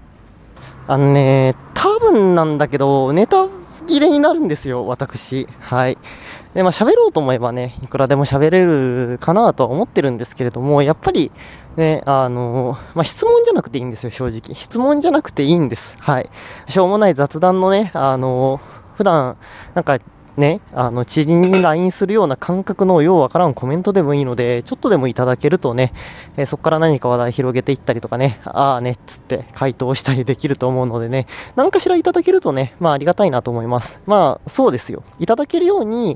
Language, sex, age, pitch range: Japanese, male, 20-39, 130-185 Hz